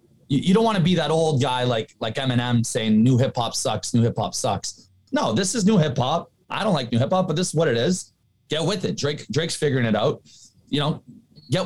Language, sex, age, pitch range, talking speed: English, male, 20-39, 120-175 Hz, 230 wpm